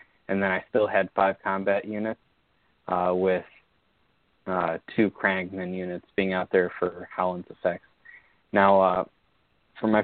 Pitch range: 95-110 Hz